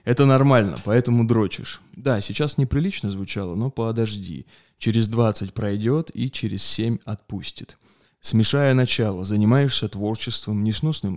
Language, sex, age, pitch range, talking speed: Russian, male, 20-39, 105-130 Hz, 120 wpm